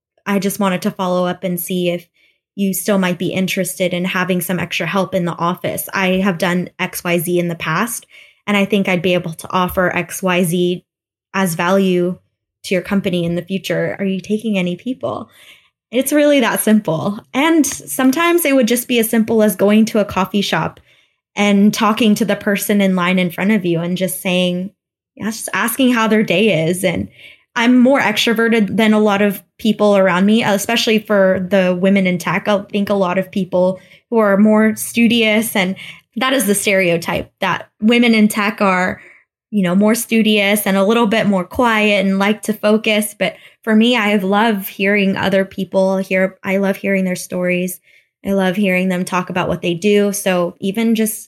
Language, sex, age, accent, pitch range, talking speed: English, female, 10-29, American, 185-215 Hz, 195 wpm